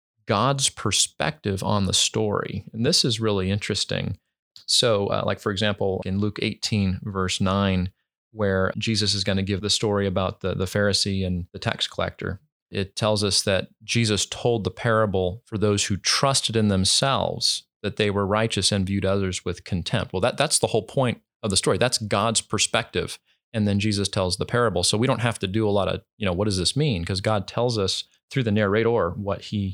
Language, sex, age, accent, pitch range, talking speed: English, male, 30-49, American, 95-110 Hz, 200 wpm